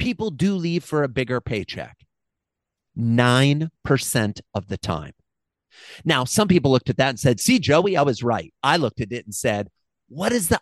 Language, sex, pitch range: English, male, 120-170 Hz